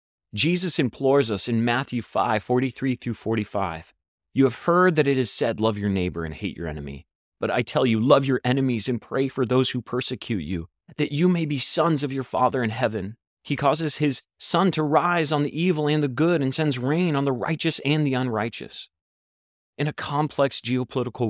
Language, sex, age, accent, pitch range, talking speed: English, male, 30-49, American, 110-145 Hz, 195 wpm